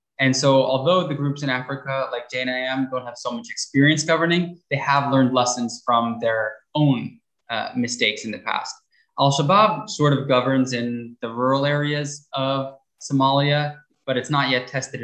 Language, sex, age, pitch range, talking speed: English, male, 20-39, 120-145 Hz, 170 wpm